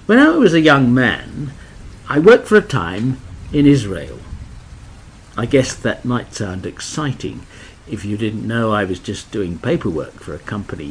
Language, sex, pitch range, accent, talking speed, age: English, male, 105-150 Hz, British, 170 wpm, 60-79